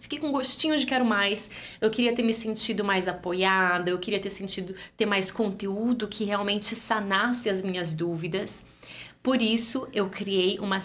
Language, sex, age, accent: Portuguese, female, 20-39, Brazilian